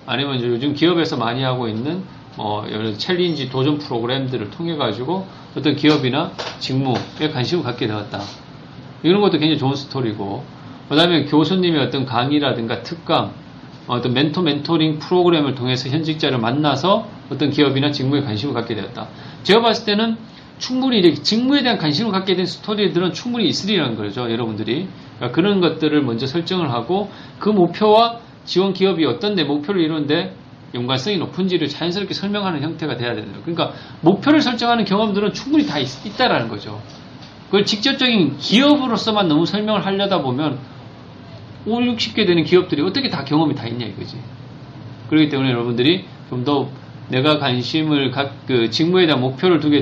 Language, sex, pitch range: Korean, male, 125-175 Hz